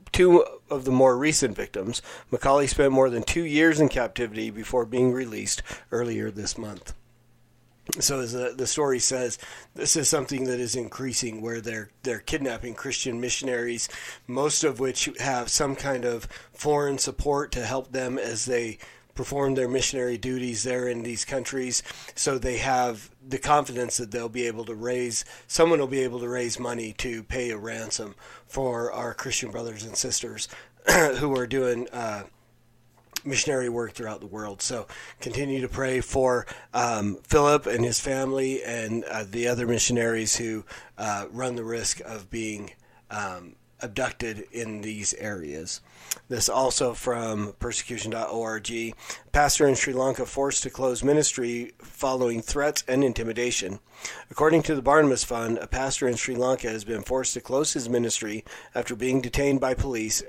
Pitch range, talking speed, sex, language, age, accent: 115-135 Hz, 160 wpm, male, English, 40-59, American